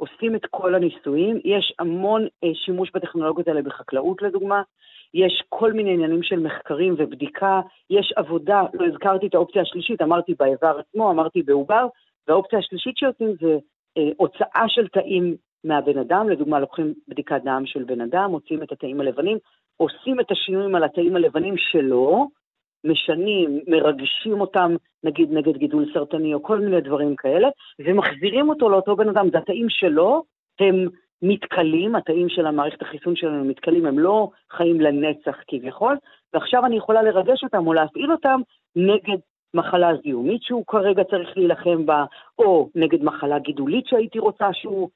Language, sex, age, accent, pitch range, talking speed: Hebrew, female, 50-69, native, 160-205 Hz, 150 wpm